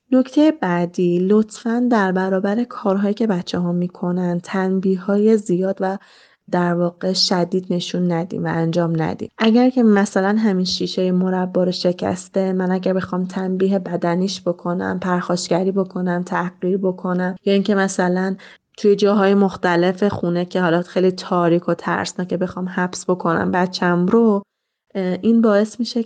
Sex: female